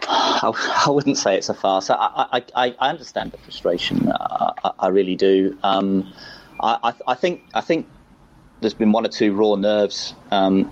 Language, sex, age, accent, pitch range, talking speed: English, male, 30-49, British, 95-105 Hz, 175 wpm